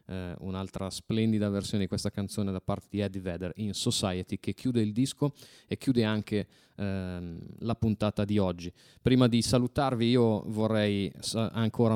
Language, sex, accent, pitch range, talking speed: Italian, male, native, 110-130 Hz, 165 wpm